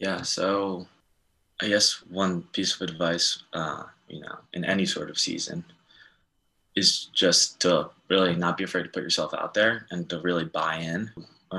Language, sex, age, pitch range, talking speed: English, male, 20-39, 85-95 Hz, 175 wpm